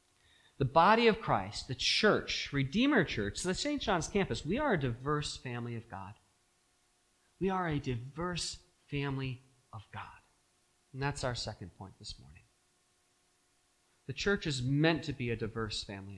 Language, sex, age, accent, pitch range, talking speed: English, male, 40-59, American, 100-170 Hz, 155 wpm